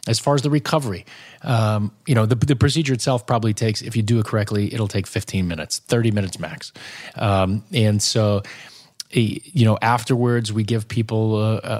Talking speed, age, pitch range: 185 wpm, 30-49, 105-130 Hz